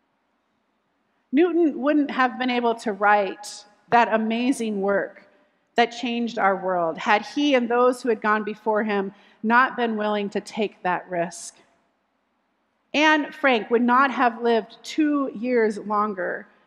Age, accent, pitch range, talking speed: 40-59, American, 220-280 Hz, 140 wpm